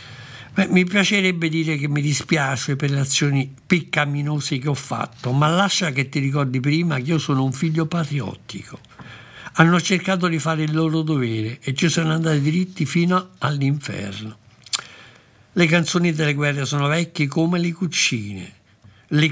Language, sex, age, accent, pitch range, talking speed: Italian, male, 60-79, native, 120-160 Hz, 155 wpm